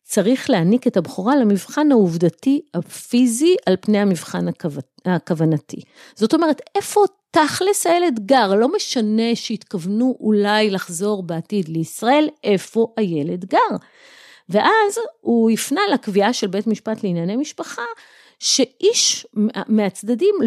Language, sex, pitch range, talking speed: Hebrew, female, 175-250 Hz, 115 wpm